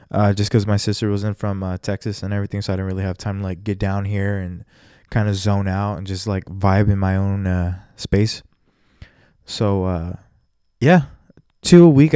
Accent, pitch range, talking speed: American, 100-125 Hz, 205 wpm